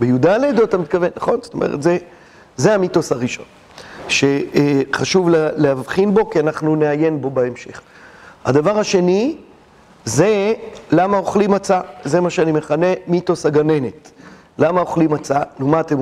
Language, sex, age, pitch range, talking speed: Hebrew, male, 40-59, 155-200 Hz, 140 wpm